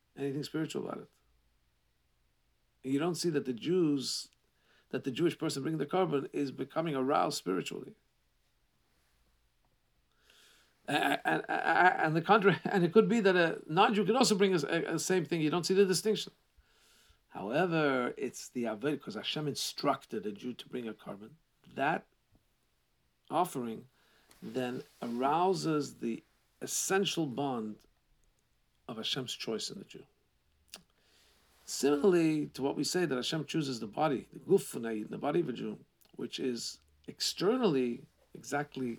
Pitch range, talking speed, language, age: 125-195 Hz, 140 wpm, English, 50-69